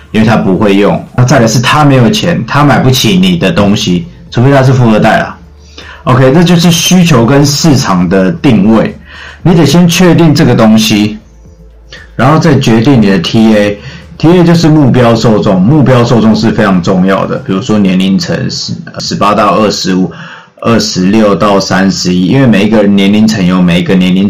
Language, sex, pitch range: Chinese, male, 95-135 Hz